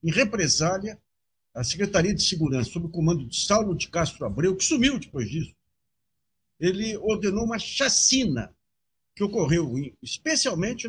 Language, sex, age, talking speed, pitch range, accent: Portuguese, male, 60-79, 145 wpm, 150-225 Hz, Brazilian